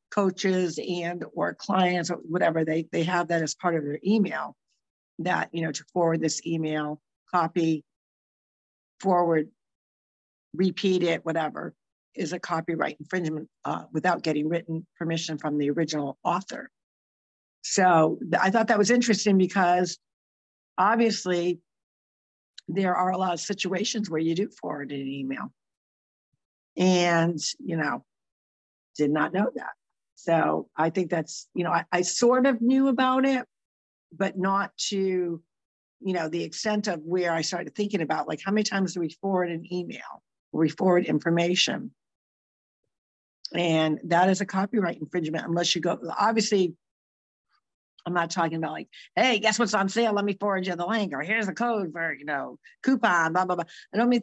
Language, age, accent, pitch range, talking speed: English, 60-79, American, 155-190 Hz, 160 wpm